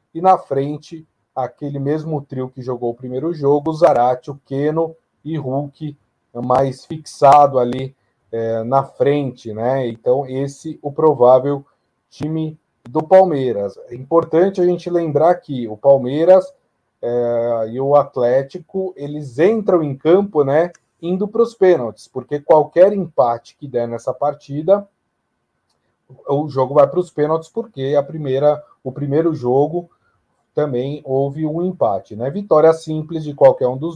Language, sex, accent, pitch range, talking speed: Portuguese, male, Brazilian, 135-180 Hz, 145 wpm